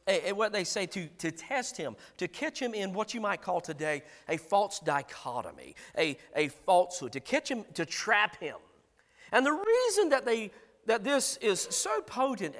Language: English